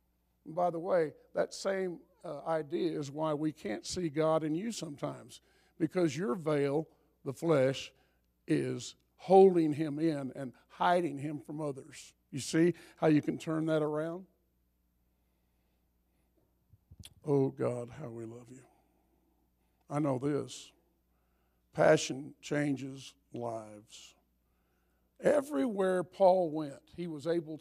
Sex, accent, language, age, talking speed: male, American, English, 50-69, 125 wpm